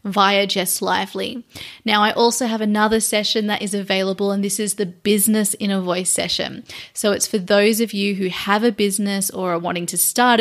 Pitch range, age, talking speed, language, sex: 195-230 Hz, 30-49, 200 wpm, English, female